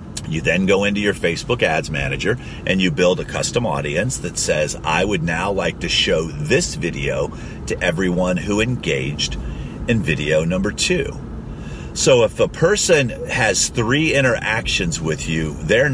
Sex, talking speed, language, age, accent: male, 160 wpm, English, 50-69, American